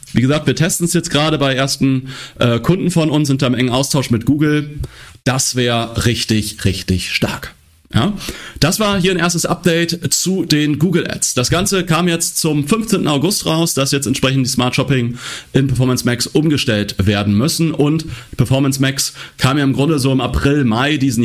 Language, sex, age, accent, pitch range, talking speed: German, male, 30-49, German, 110-140 Hz, 185 wpm